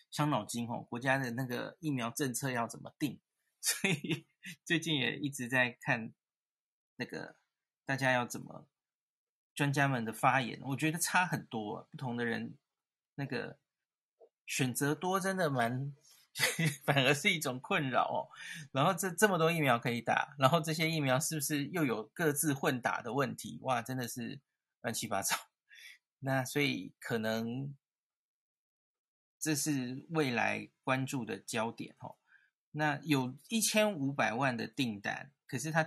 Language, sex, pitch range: Chinese, male, 125-155 Hz